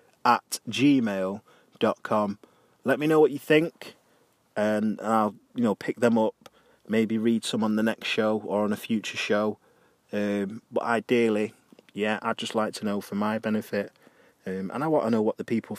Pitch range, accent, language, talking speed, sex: 105-125 Hz, British, English, 185 wpm, male